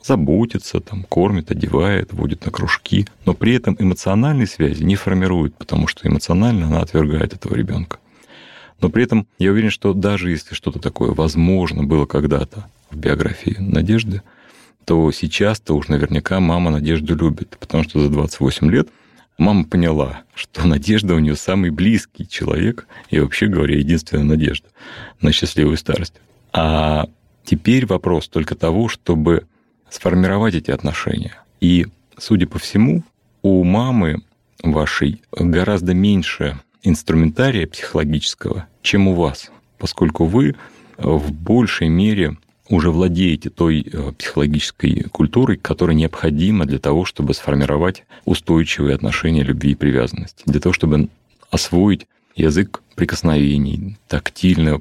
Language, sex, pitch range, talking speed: Russian, male, 75-100 Hz, 130 wpm